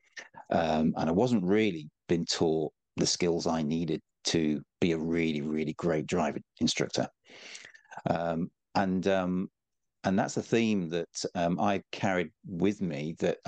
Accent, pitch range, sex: British, 80-100 Hz, male